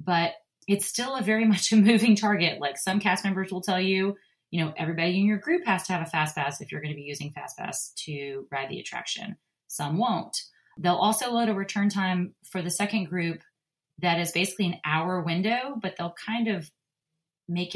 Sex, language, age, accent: female, English, 30-49, American